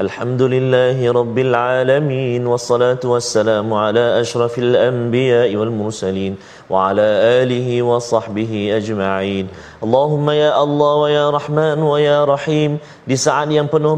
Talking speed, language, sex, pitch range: 125 wpm, Malayalam, male, 120-150 Hz